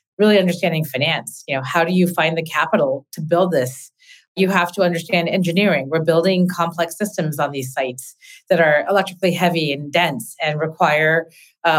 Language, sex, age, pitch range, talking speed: English, female, 30-49, 160-190 Hz, 180 wpm